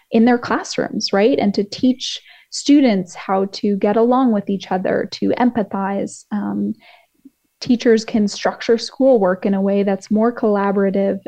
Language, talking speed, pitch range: English, 150 wpm, 200-235 Hz